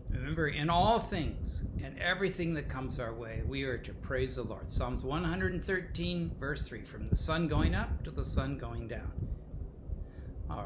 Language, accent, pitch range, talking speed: English, American, 85-140 Hz, 175 wpm